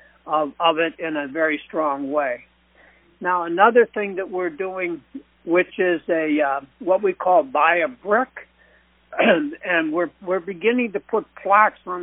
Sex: male